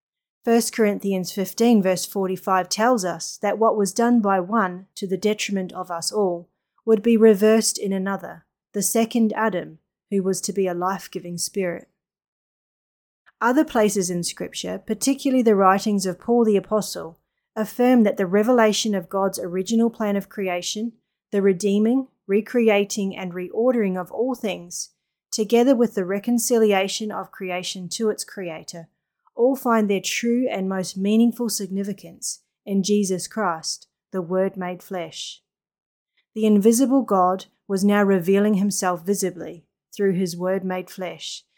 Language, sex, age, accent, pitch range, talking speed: English, female, 30-49, Australian, 185-220 Hz, 145 wpm